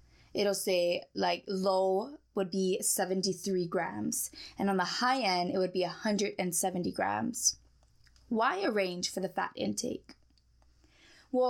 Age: 20-39